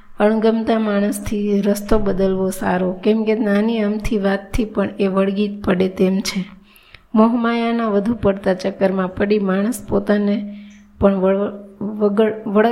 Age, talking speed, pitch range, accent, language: 20-39, 115 wpm, 200-220 Hz, native, Gujarati